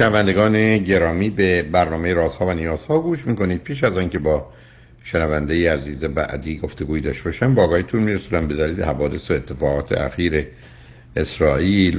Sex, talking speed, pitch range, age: male, 140 wpm, 65-85 Hz, 60-79